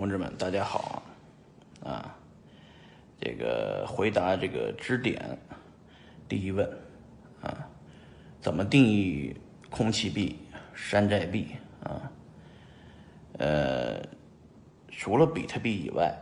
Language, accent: Chinese, native